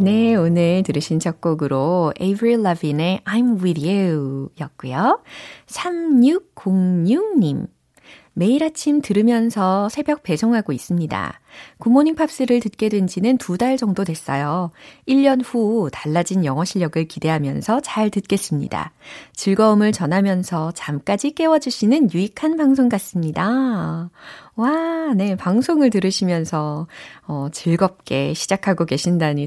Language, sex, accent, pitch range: Korean, female, native, 160-225 Hz